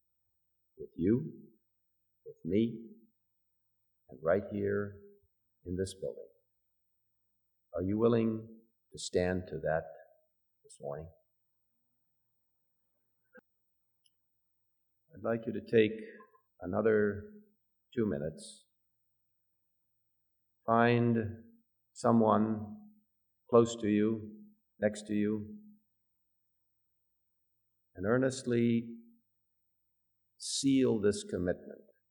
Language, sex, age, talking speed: English, male, 50-69, 75 wpm